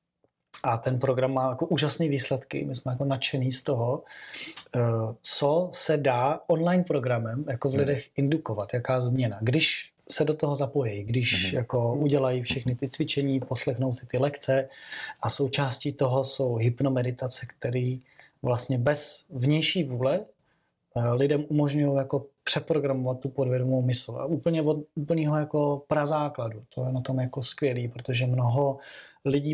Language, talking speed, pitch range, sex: Czech, 145 wpm, 125-150 Hz, male